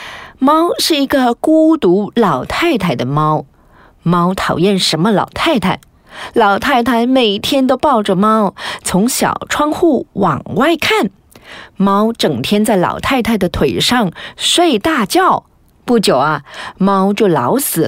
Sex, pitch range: female, 170-255 Hz